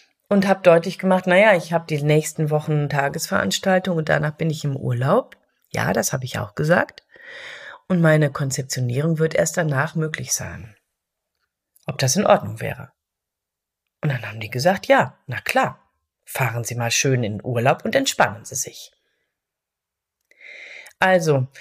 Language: German